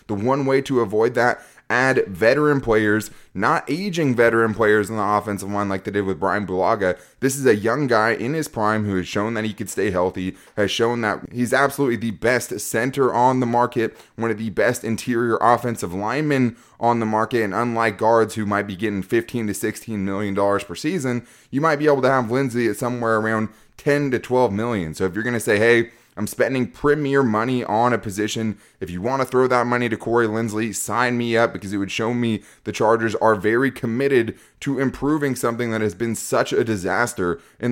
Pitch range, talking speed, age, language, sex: 105-120 Hz, 210 wpm, 20-39, English, male